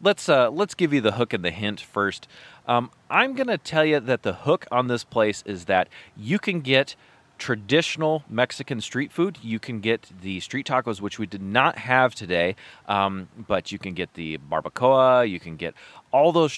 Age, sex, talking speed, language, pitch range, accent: 30-49, male, 205 wpm, English, 100-165 Hz, American